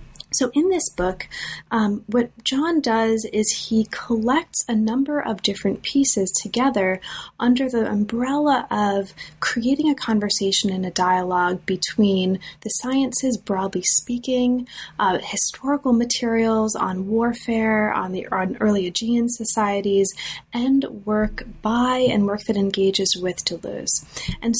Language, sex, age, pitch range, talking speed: English, female, 20-39, 195-245 Hz, 130 wpm